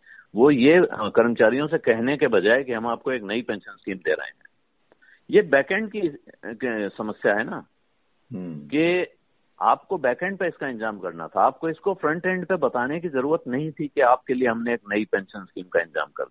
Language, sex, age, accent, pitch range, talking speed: Hindi, male, 60-79, native, 110-165 Hz, 195 wpm